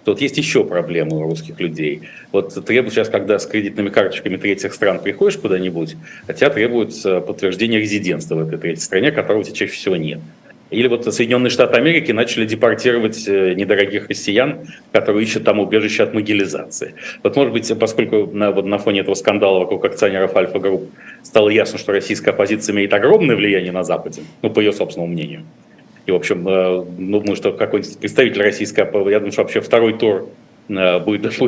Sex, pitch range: male, 95-115 Hz